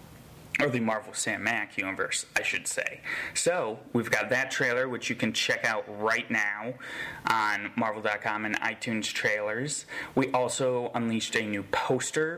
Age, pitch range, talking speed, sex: 30-49, 110-130 Hz, 150 wpm, male